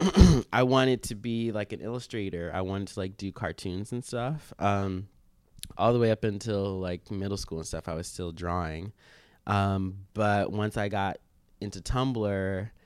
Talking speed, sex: 175 wpm, male